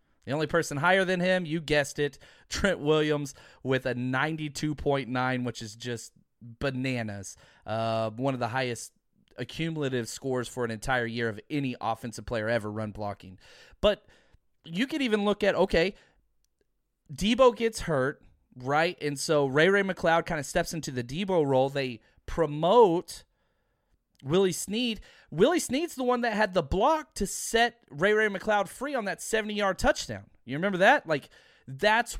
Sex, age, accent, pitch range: male, 30-49, American, 130-195 Hz